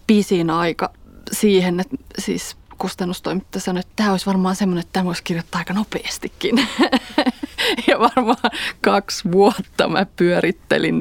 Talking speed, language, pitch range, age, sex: 130 wpm, Finnish, 190-230 Hz, 20-39, female